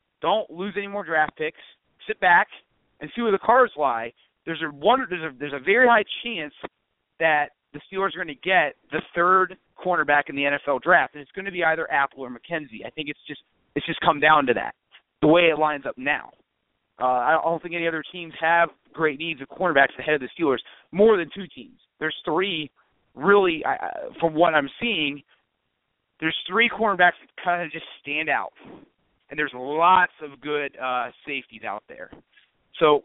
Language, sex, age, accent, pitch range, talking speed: English, male, 40-59, American, 145-190 Hz, 200 wpm